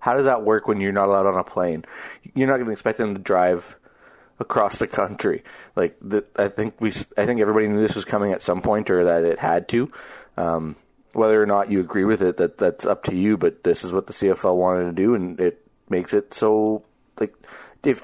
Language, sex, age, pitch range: English, male, 30-49, 90-110 Hz